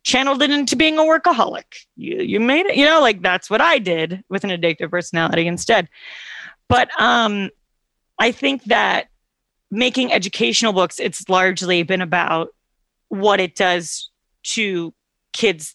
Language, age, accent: English, 30-49, American